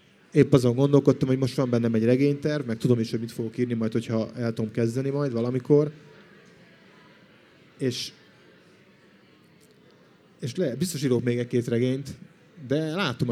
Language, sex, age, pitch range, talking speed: Hungarian, male, 30-49, 115-140 Hz, 150 wpm